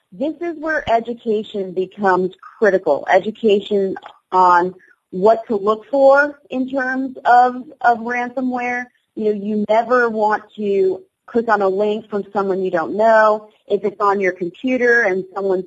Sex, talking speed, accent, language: female, 150 wpm, American, English